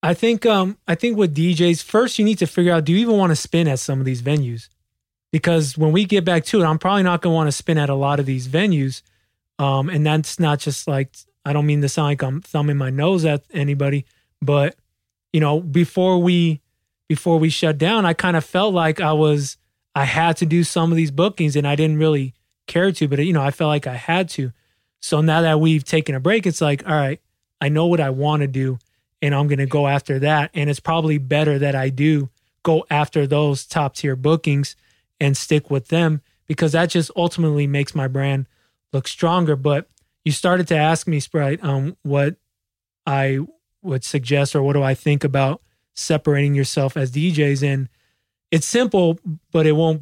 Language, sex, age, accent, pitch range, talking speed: English, male, 20-39, American, 140-165 Hz, 215 wpm